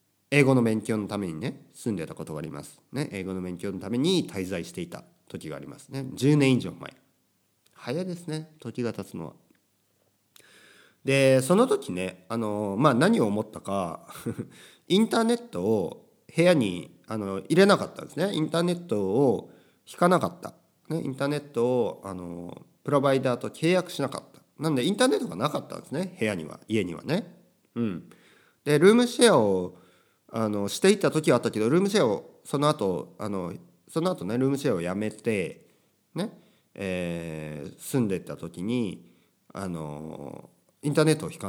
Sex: male